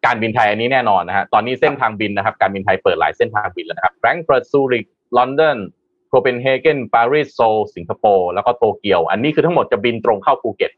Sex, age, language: male, 20-39, Thai